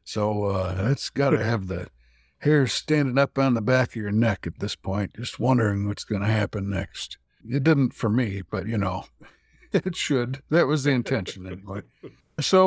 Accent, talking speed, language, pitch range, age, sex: American, 195 wpm, English, 110-145 Hz, 60-79, male